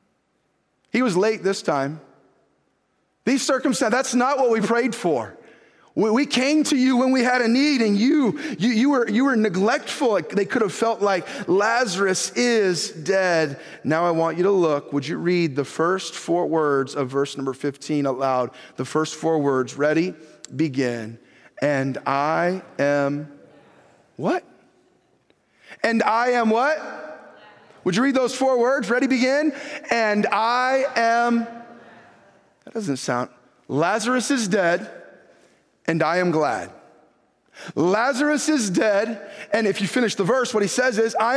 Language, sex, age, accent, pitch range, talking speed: English, male, 30-49, American, 190-255 Hz, 145 wpm